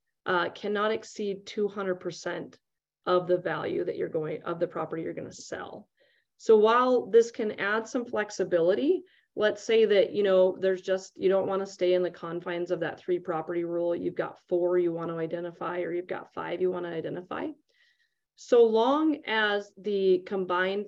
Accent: American